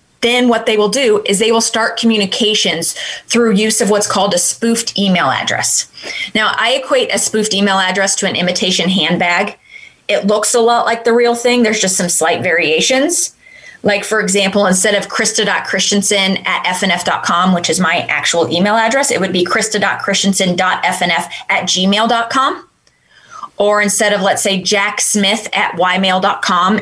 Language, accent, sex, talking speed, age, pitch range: English, American, female, 160 wpm, 20-39, 190-230 Hz